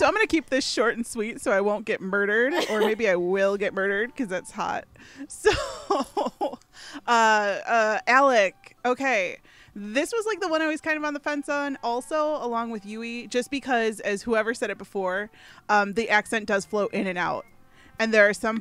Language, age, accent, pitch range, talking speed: English, 20-39, American, 200-260 Hz, 205 wpm